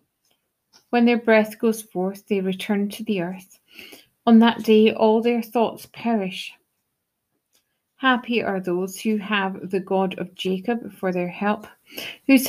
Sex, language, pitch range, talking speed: female, English, 195-230 Hz, 145 wpm